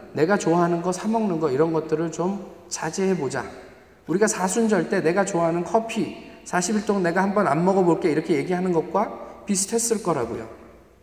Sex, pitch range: male, 145-220 Hz